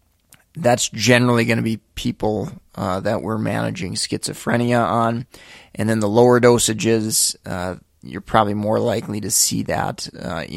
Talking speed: 150 wpm